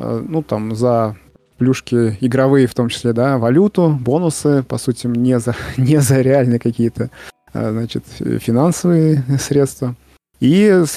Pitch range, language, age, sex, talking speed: 115-145 Hz, Russian, 20-39, male, 125 wpm